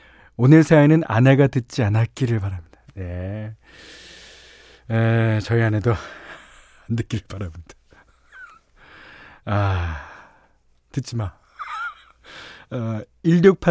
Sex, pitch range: male, 105-155 Hz